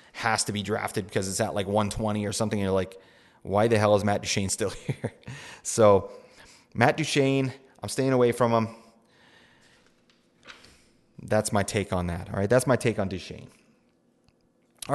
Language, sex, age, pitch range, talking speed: English, male, 30-49, 95-115 Hz, 175 wpm